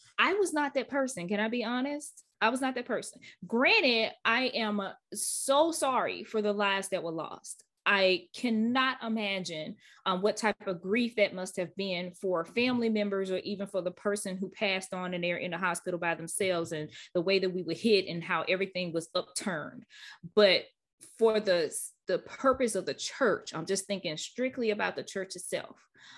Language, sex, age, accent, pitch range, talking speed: English, female, 20-39, American, 185-235 Hz, 190 wpm